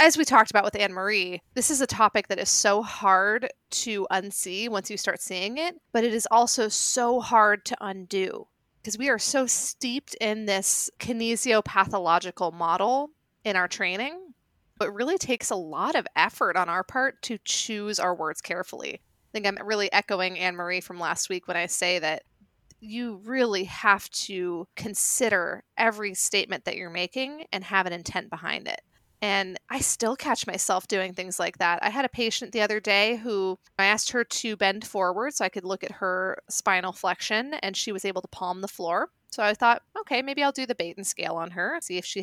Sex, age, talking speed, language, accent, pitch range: female, 20-39, 200 wpm, English, American, 185-230 Hz